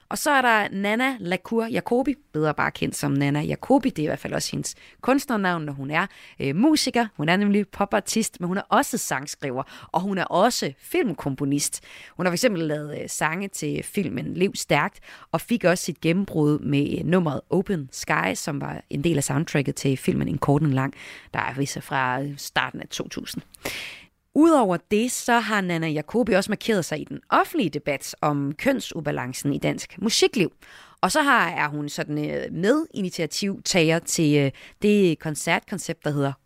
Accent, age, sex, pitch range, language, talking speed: native, 30-49, female, 145-225 Hz, Danish, 175 wpm